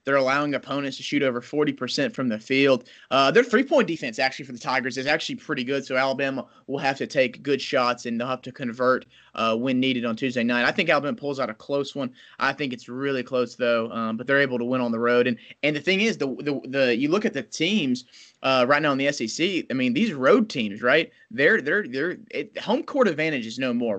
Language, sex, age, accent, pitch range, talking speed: English, male, 30-49, American, 125-165 Hz, 250 wpm